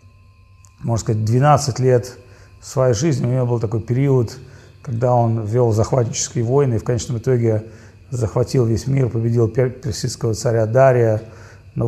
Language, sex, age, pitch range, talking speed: Russian, male, 40-59, 105-135 Hz, 140 wpm